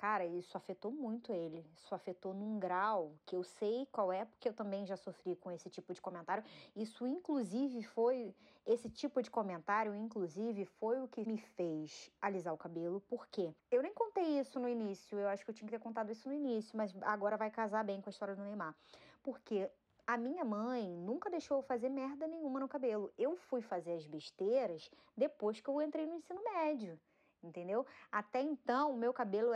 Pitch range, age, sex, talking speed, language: 190-265 Hz, 20-39, female, 200 wpm, Portuguese